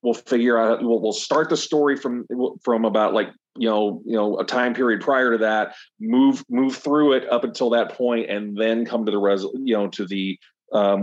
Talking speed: 225 wpm